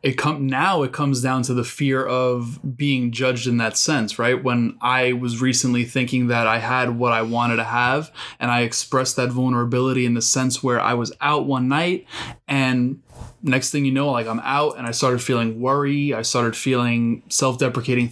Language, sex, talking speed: English, male, 195 wpm